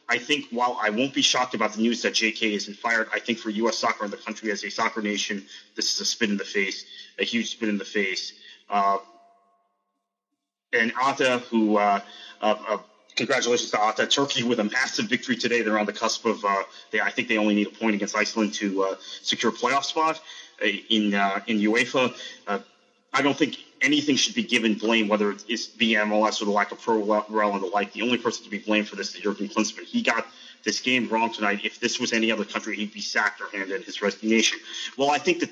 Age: 30-49